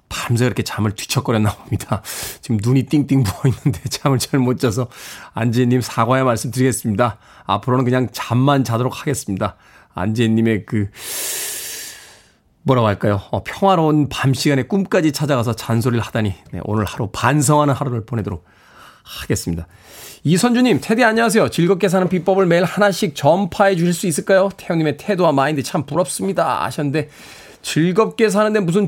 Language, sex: Korean, male